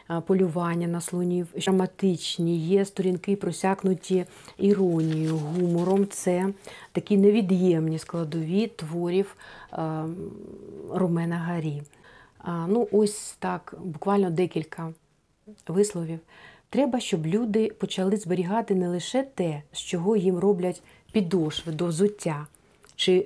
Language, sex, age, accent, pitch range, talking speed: Ukrainian, female, 40-59, native, 170-210 Hz, 105 wpm